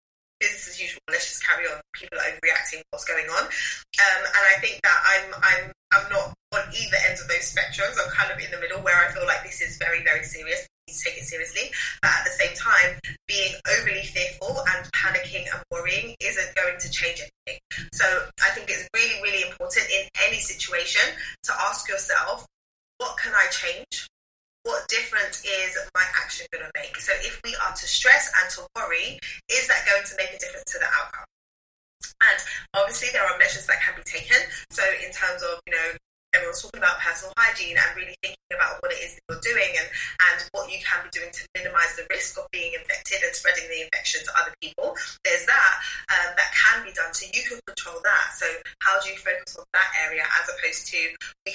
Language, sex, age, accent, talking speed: English, female, 20-39, British, 215 wpm